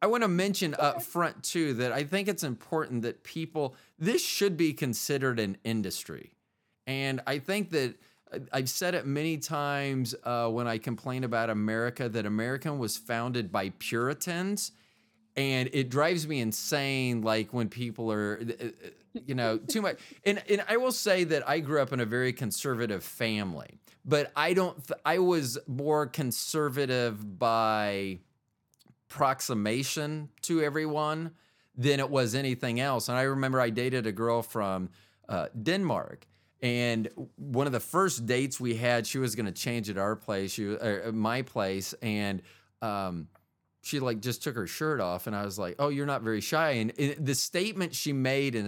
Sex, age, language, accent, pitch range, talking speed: male, 30-49, English, American, 110-150 Hz, 170 wpm